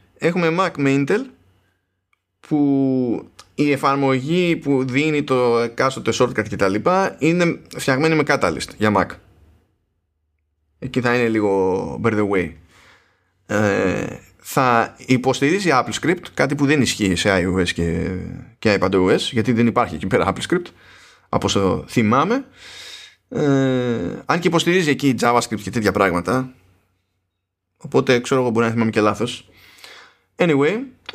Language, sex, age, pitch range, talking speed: Greek, male, 20-39, 100-140 Hz, 125 wpm